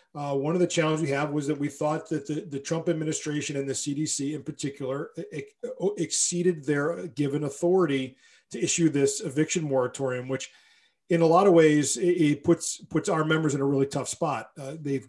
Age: 40-59